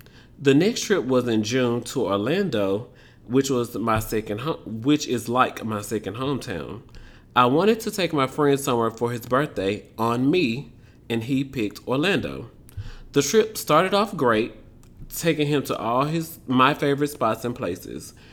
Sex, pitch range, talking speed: male, 110-135 Hz, 165 wpm